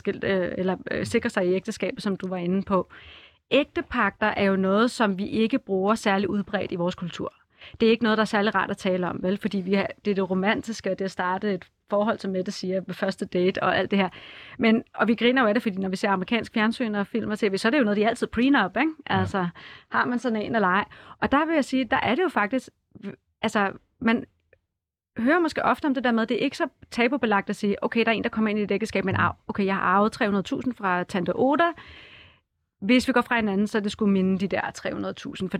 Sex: female